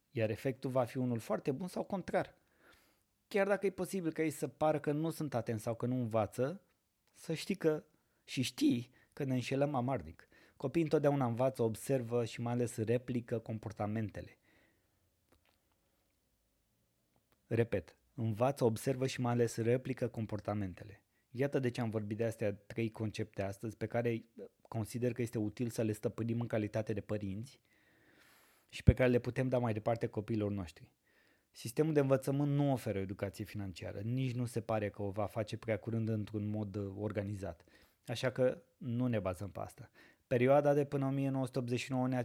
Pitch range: 105-130 Hz